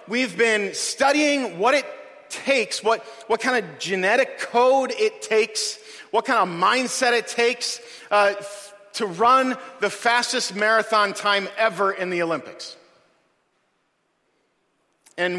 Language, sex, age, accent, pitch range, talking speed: English, male, 40-59, American, 205-260 Hz, 125 wpm